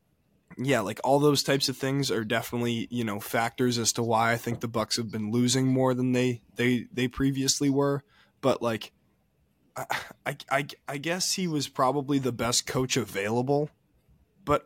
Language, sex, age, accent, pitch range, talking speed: English, male, 20-39, American, 115-135 Hz, 175 wpm